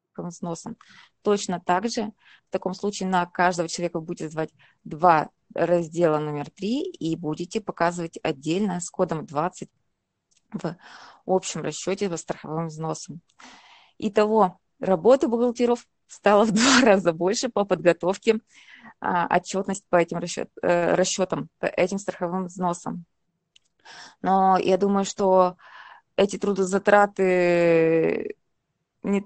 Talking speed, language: 115 wpm, Russian